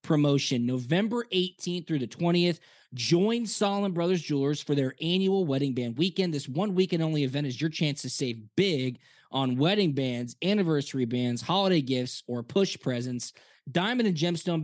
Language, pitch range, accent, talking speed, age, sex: English, 125-175 Hz, American, 165 wpm, 20-39, male